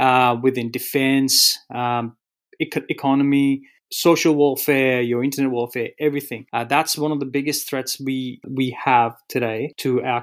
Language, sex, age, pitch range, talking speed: English, male, 30-49, 135-175 Hz, 145 wpm